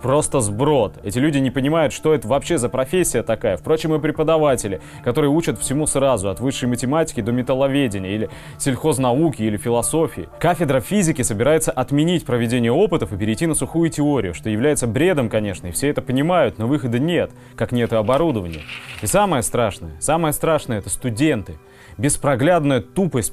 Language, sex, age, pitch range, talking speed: Russian, male, 20-39, 115-150 Hz, 160 wpm